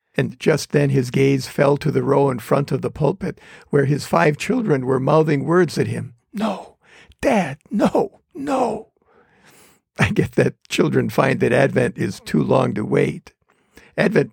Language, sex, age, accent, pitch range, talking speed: English, male, 60-79, American, 130-180 Hz, 170 wpm